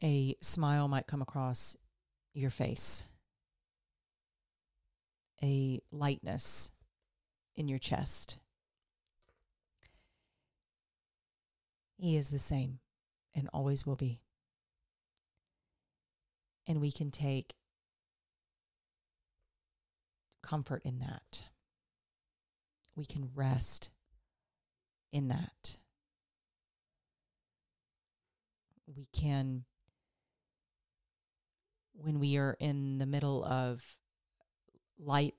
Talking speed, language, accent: 70 wpm, English, American